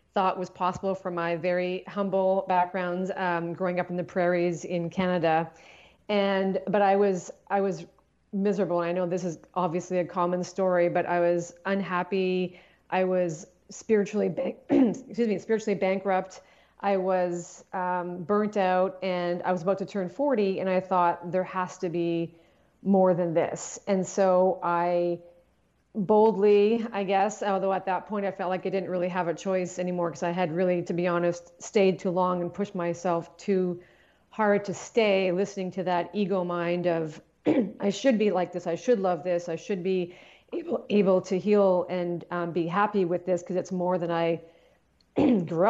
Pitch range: 175-195 Hz